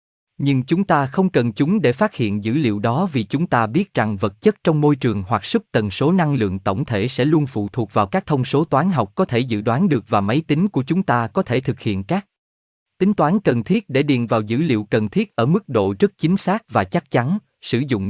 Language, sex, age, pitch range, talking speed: Vietnamese, male, 20-39, 110-165 Hz, 260 wpm